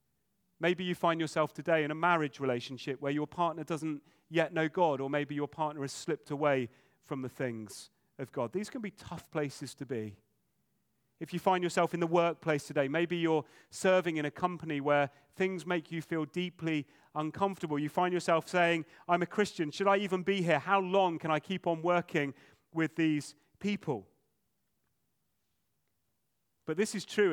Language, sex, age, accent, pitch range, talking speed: English, male, 40-59, British, 140-175 Hz, 180 wpm